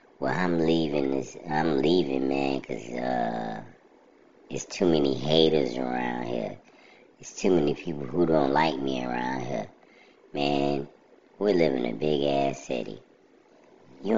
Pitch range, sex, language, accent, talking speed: 70-90 Hz, male, English, American, 145 wpm